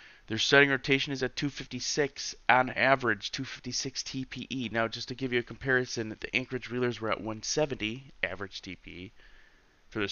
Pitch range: 105-125 Hz